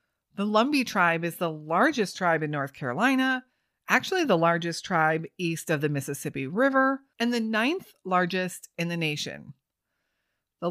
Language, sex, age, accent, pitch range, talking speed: English, female, 30-49, American, 160-225 Hz, 150 wpm